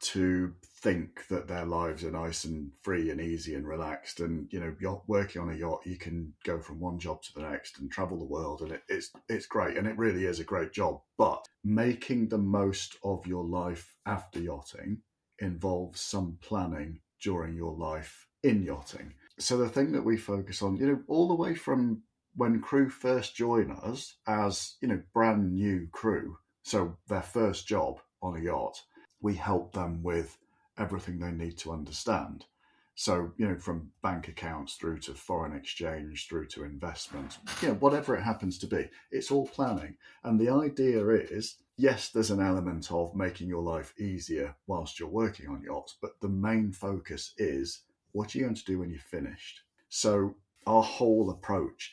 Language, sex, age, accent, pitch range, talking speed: English, male, 40-59, British, 85-110 Hz, 185 wpm